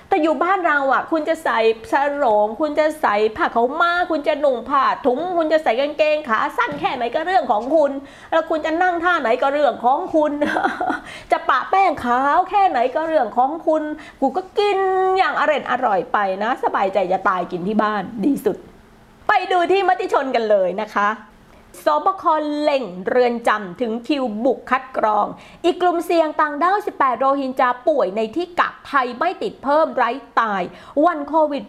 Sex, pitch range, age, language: female, 240-335 Hz, 30-49, Thai